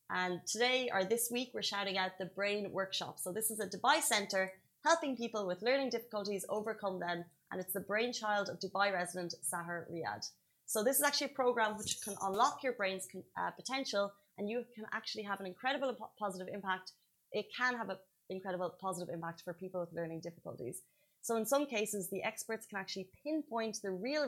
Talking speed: 195 wpm